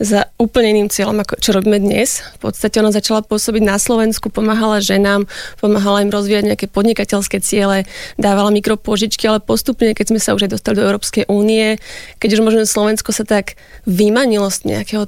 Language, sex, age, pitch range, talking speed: Slovak, female, 20-39, 200-220 Hz, 175 wpm